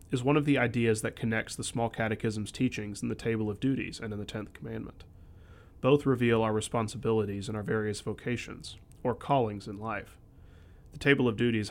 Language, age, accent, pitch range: English, 30-49, American, 100-120 Hz